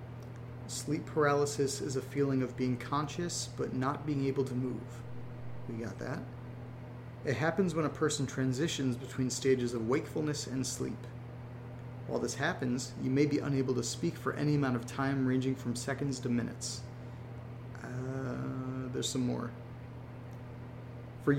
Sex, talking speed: male, 150 wpm